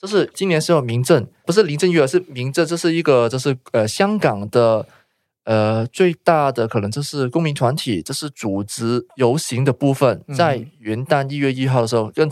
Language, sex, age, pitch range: Chinese, male, 20-39, 120-160 Hz